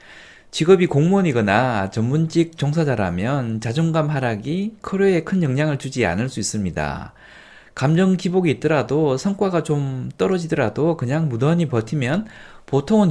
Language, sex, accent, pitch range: Korean, male, native, 115-175 Hz